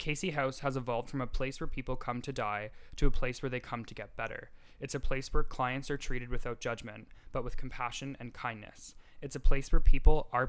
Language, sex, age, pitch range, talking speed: English, male, 10-29, 115-135 Hz, 235 wpm